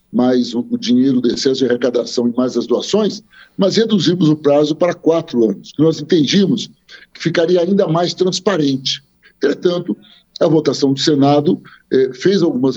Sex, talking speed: male, 160 wpm